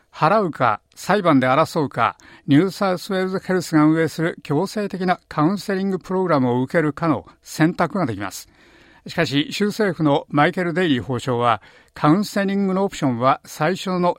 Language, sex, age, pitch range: Japanese, male, 50-69, 140-185 Hz